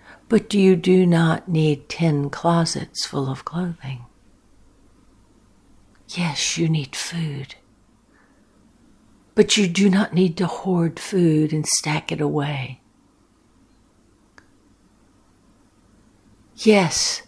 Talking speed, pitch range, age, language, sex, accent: 95 wpm, 140-180 Hz, 60-79, English, female, American